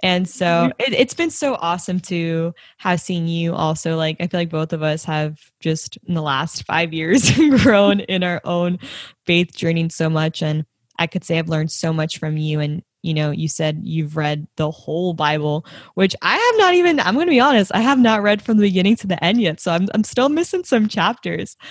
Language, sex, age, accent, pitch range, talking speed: English, female, 10-29, American, 165-210 Hz, 225 wpm